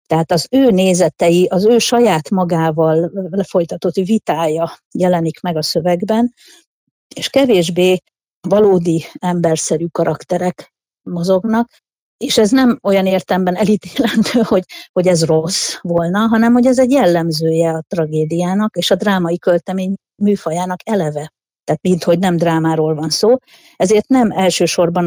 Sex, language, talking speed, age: female, Hungarian, 125 wpm, 50-69